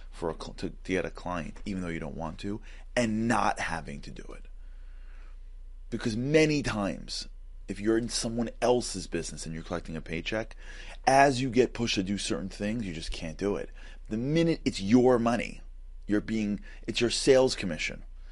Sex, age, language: male, 30-49, English